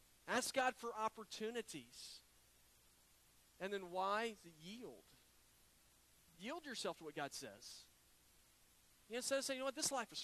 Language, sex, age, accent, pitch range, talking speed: English, male, 40-59, American, 150-190 Hz, 140 wpm